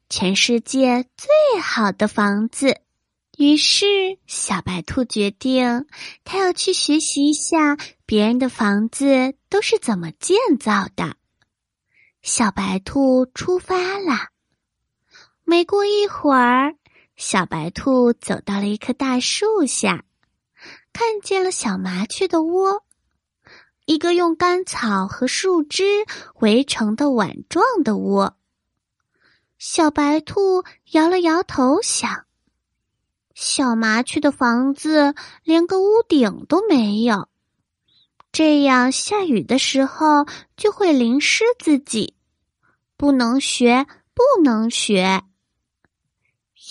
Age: 20-39